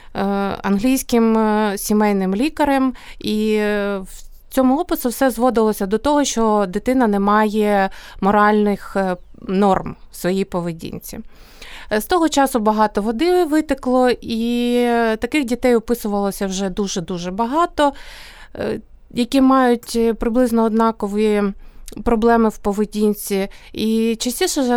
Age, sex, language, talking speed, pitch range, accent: 30-49, female, Ukrainian, 105 wpm, 205-255 Hz, native